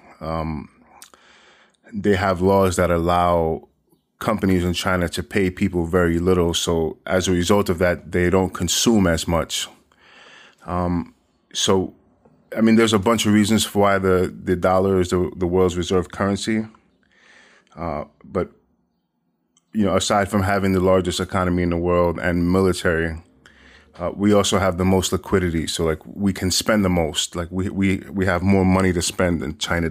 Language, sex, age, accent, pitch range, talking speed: English, male, 20-39, American, 85-95 Hz, 170 wpm